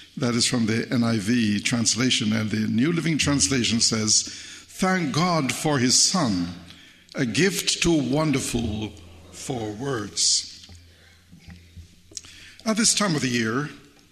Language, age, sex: English, 60-79, male